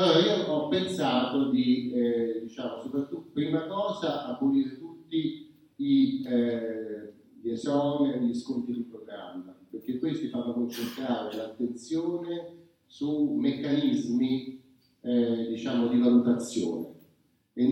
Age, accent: 40-59, native